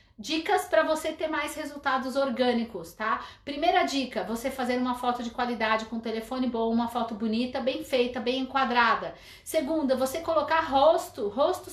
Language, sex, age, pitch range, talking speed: Portuguese, female, 40-59, 250-310 Hz, 160 wpm